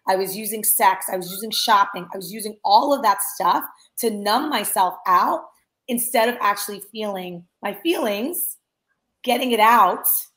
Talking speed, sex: 160 wpm, female